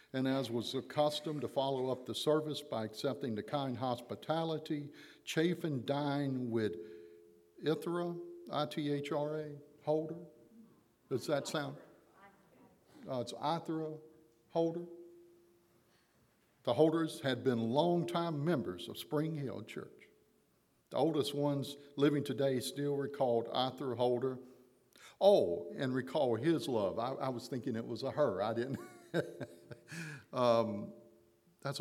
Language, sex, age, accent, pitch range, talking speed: English, male, 60-79, American, 115-150 Hz, 130 wpm